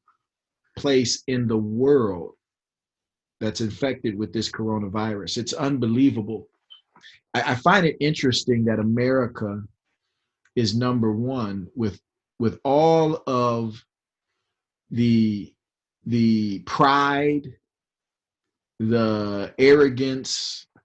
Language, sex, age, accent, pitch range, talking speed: English, male, 40-59, American, 110-135 Hz, 85 wpm